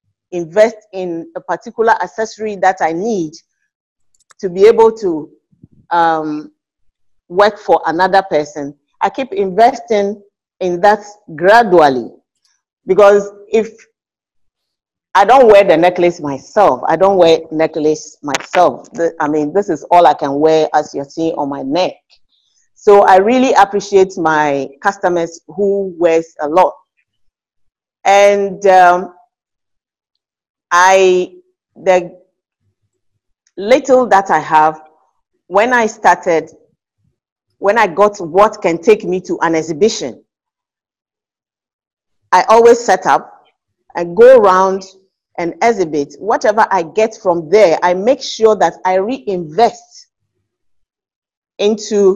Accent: Nigerian